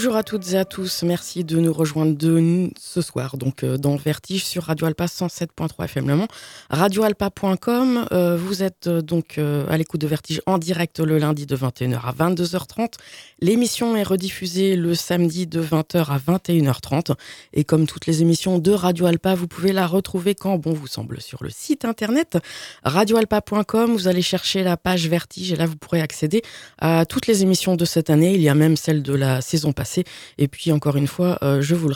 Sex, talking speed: female, 205 wpm